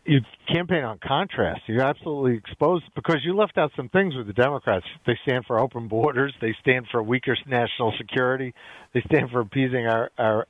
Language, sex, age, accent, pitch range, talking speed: English, male, 50-69, American, 120-155 Hz, 190 wpm